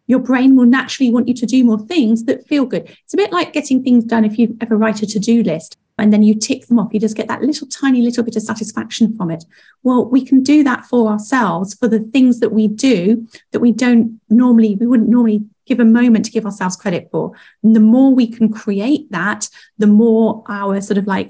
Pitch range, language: 205-240 Hz, English